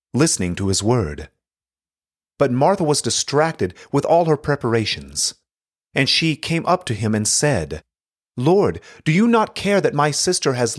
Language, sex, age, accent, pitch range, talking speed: English, male, 30-49, American, 85-145 Hz, 160 wpm